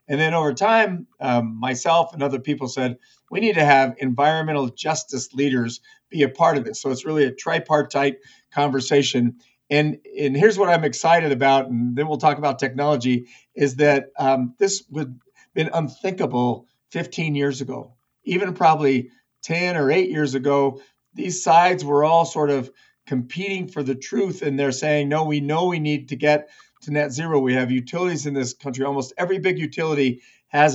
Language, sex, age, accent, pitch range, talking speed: English, male, 50-69, American, 135-160 Hz, 180 wpm